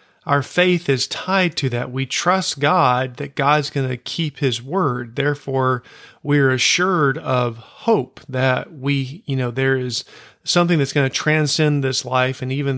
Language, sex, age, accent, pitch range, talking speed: English, male, 40-59, American, 125-145 Hz, 170 wpm